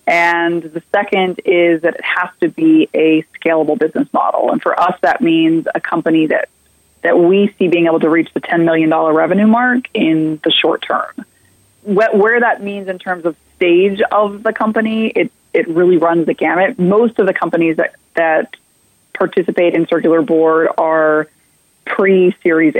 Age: 20-39